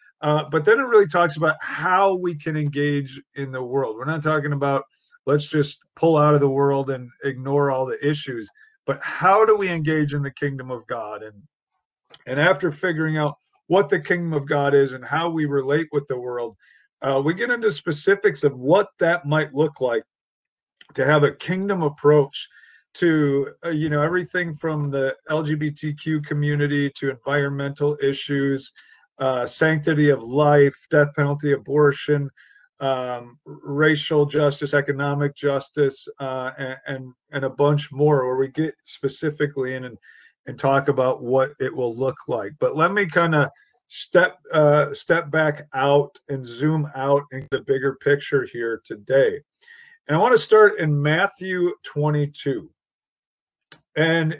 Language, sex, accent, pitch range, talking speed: English, male, American, 140-160 Hz, 165 wpm